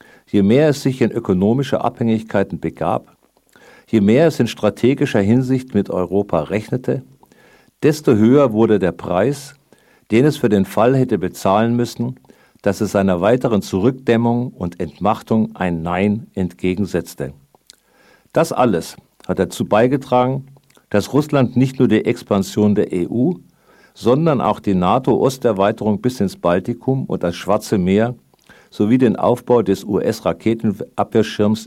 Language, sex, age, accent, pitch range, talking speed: German, male, 50-69, German, 95-120 Hz, 130 wpm